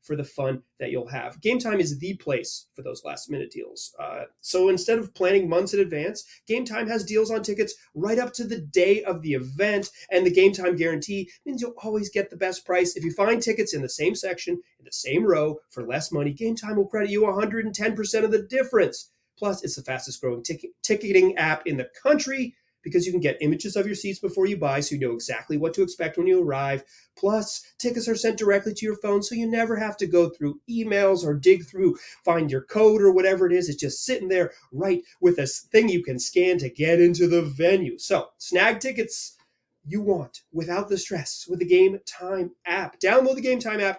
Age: 30-49